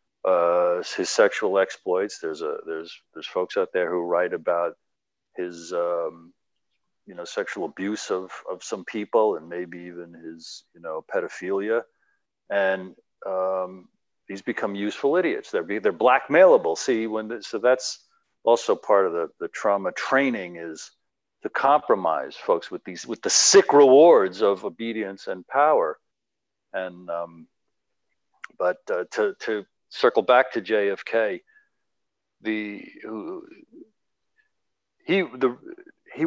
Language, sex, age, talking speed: English, male, 50-69, 135 wpm